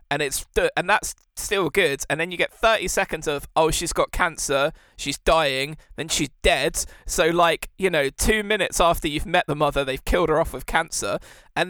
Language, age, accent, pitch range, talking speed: English, 20-39, British, 150-200 Hz, 205 wpm